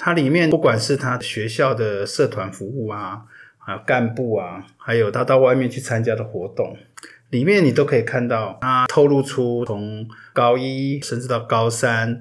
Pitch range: 110-135 Hz